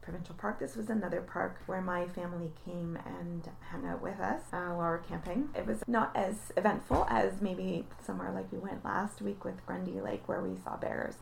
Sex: female